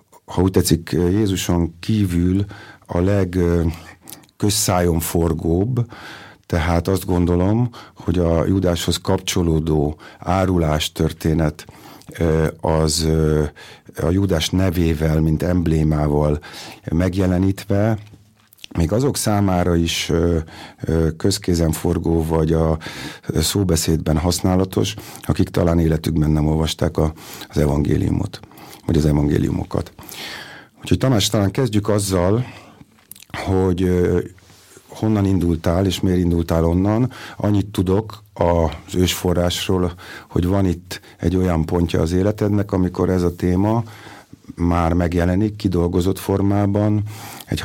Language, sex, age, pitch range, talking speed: Hungarian, male, 50-69, 85-100 Hz, 95 wpm